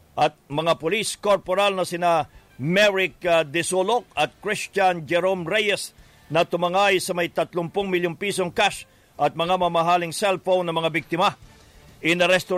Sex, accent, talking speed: male, Filipino, 135 wpm